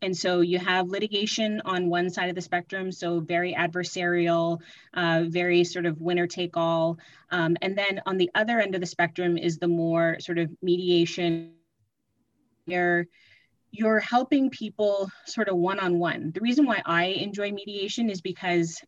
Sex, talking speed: female, 160 wpm